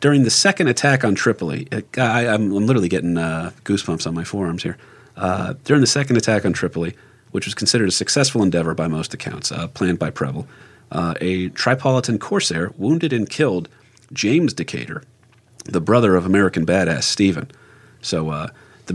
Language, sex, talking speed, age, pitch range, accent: English, male, 175 wpm, 40-59, 90-120 Hz, American